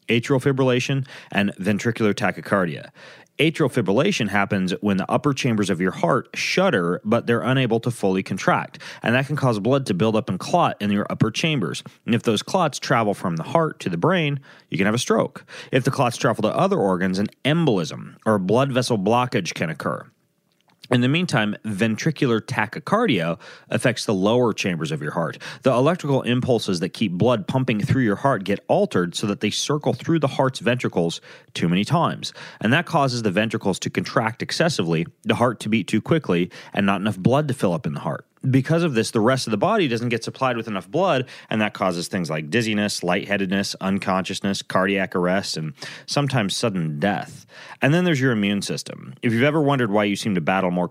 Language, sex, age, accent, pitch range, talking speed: English, male, 30-49, American, 100-135 Hz, 200 wpm